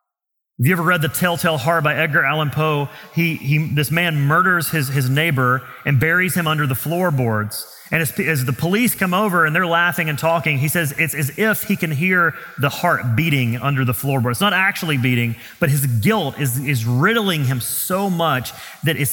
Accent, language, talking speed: American, English, 205 wpm